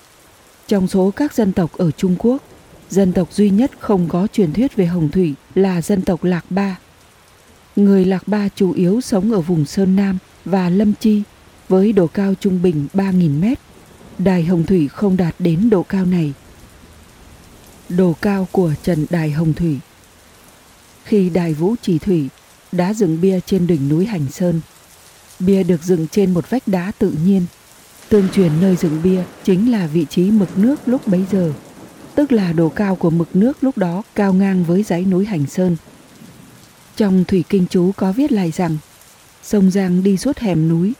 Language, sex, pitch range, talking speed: Vietnamese, female, 175-200 Hz, 185 wpm